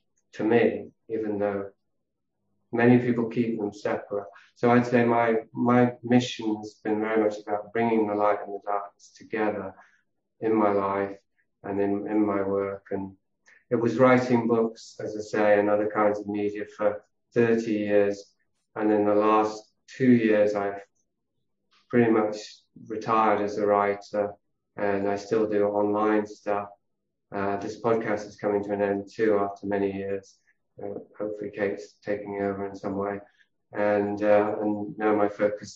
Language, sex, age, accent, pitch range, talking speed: English, male, 30-49, British, 100-110 Hz, 160 wpm